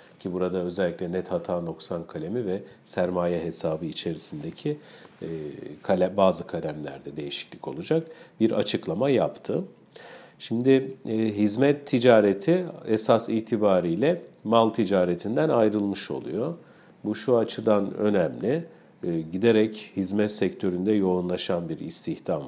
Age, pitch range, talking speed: 50-69, 90-115 Hz, 110 wpm